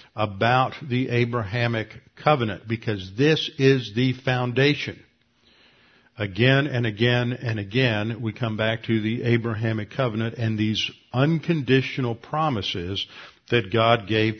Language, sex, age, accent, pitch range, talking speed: English, male, 50-69, American, 110-130 Hz, 115 wpm